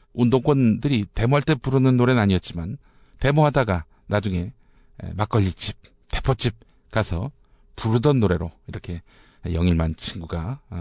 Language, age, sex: Korean, 50-69, male